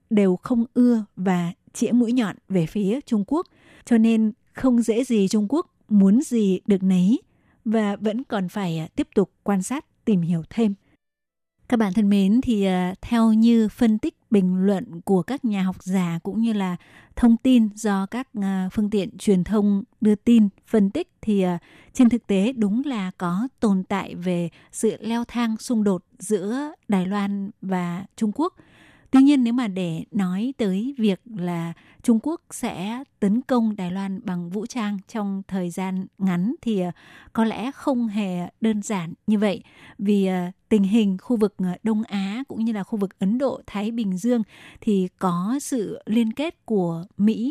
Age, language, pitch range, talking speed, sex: 20-39, Vietnamese, 190-235 Hz, 180 wpm, female